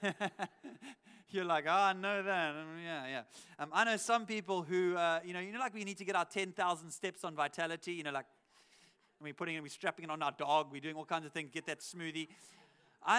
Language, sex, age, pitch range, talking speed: English, male, 30-49, 165-205 Hz, 235 wpm